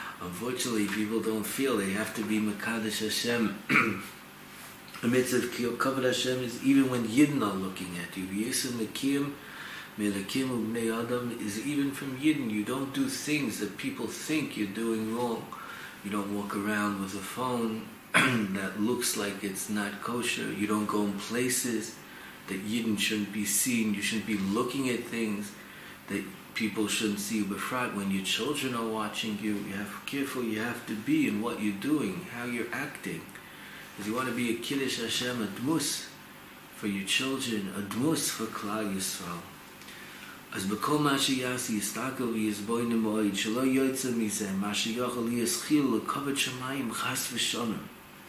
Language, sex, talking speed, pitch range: English, male, 145 wpm, 105-125 Hz